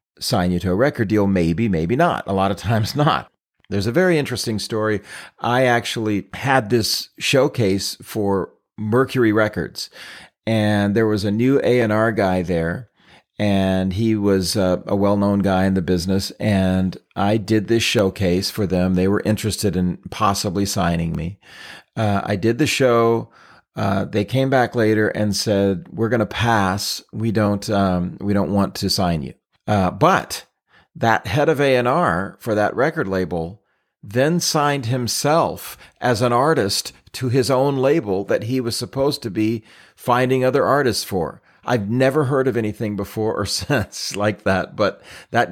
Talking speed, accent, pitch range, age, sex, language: 165 wpm, American, 95-125 Hz, 40-59, male, English